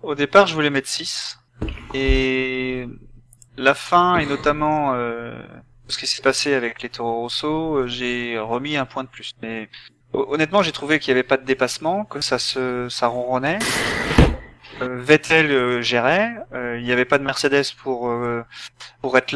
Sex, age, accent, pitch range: male, 30-49, French, 120-140 Hz